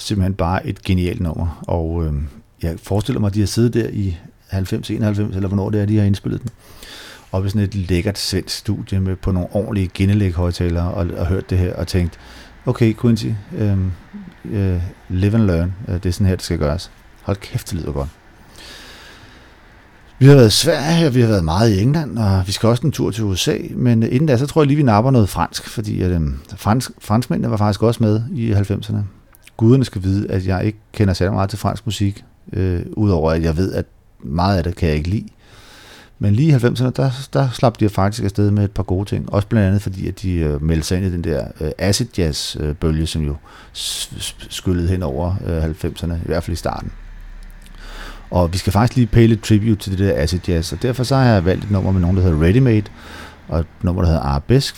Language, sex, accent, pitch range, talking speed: Danish, male, native, 90-110 Hz, 225 wpm